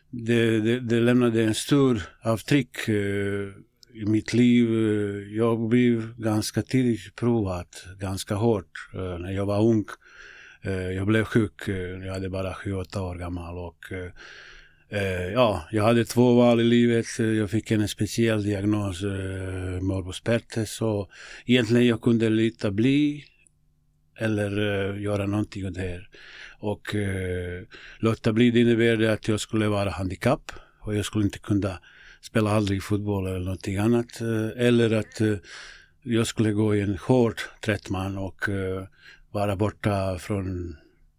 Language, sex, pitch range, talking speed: Swedish, male, 95-115 Hz, 140 wpm